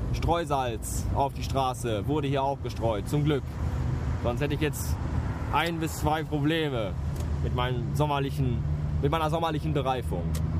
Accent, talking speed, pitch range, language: German, 140 wpm, 95-140 Hz, German